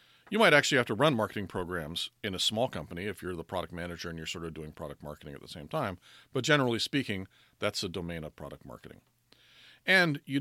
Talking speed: 225 wpm